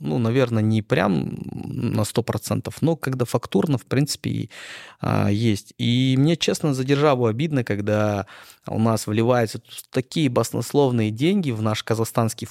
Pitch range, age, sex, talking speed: 105-120 Hz, 20-39, male, 140 wpm